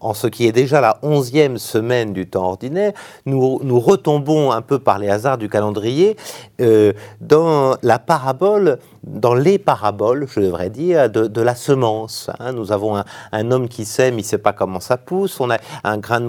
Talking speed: 205 wpm